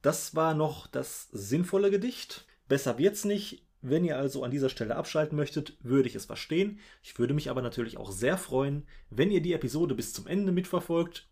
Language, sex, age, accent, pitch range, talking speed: German, male, 30-49, German, 105-175 Hz, 195 wpm